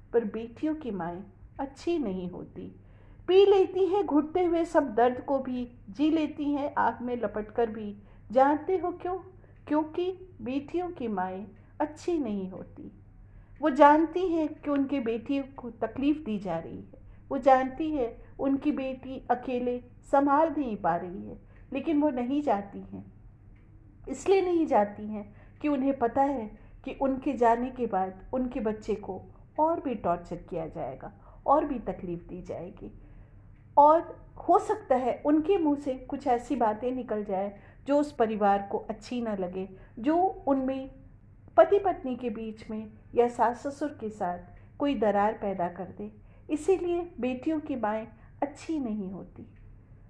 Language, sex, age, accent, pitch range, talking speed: Hindi, female, 40-59, native, 195-295 Hz, 155 wpm